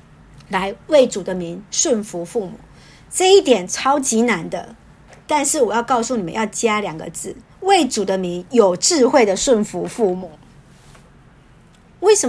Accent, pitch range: American, 185-260 Hz